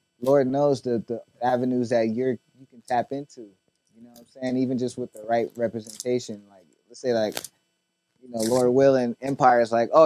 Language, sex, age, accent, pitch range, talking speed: English, male, 20-39, American, 120-145 Hz, 210 wpm